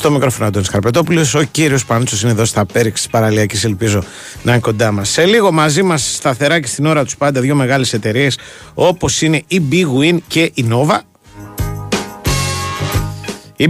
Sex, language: male, Greek